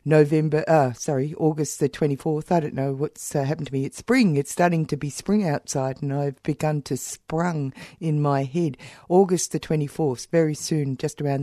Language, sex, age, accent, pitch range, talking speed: English, female, 50-69, Australian, 140-160 Hz, 195 wpm